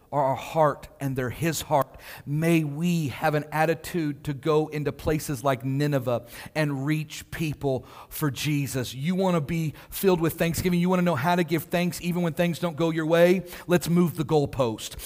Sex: male